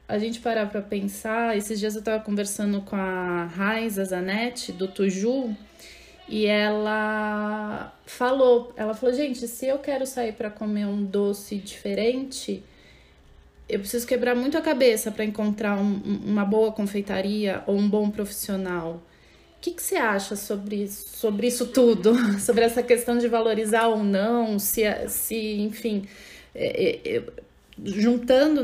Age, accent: 20-39, Brazilian